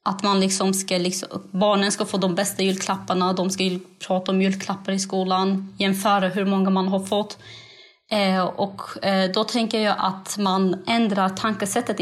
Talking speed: 170 wpm